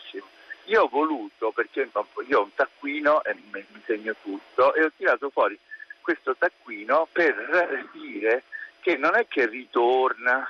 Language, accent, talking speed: Italian, native, 145 wpm